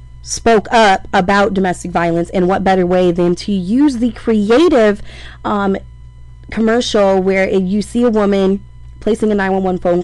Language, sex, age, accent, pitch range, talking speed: English, female, 20-39, American, 165-195 Hz, 155 wpm